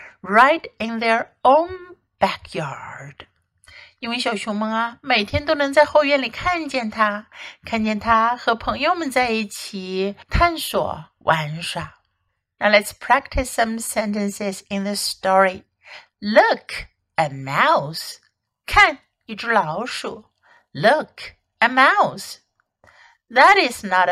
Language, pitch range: Chinese, 200-305 Hz